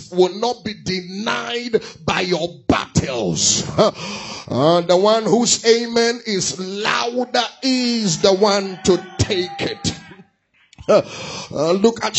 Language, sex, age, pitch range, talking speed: English, male, 30-49, 170-215 Hz, 125 wpm